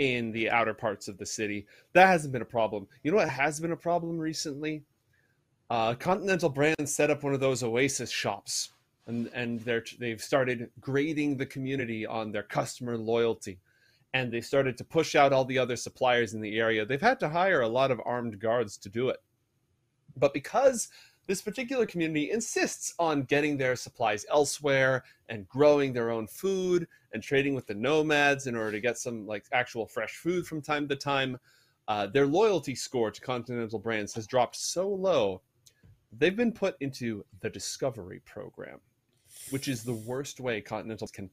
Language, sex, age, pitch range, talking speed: English, male, 30-49, 115-145 Hz, 180 wpm